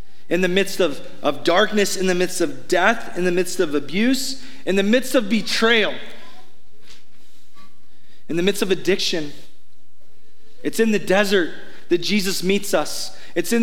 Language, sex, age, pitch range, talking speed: English, male, 30-49, 170-220 Hz, 160 wpm